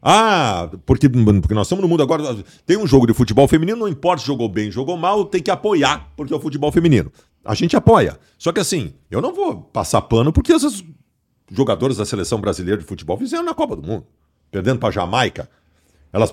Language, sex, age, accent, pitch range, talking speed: Portuguese, male, 50-69, Brazilian, 125-200 Hz, 215 wpm